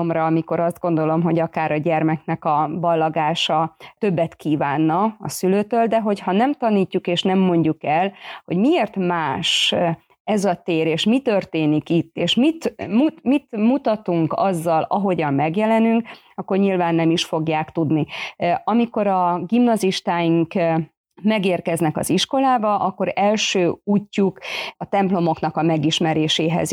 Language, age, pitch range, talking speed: Hungarian, 30-49, 165-210 Hz, 130 wpm